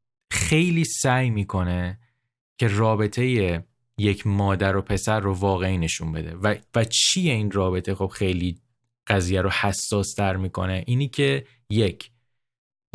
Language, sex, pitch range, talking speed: Persian, male, 95-120 Hz, 130 wpm